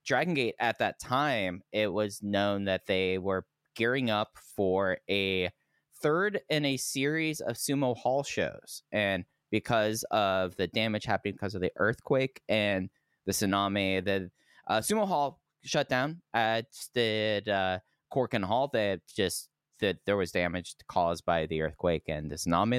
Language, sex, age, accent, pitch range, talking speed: English, male, 20-39, American, 100-135 Hz, 165 wpm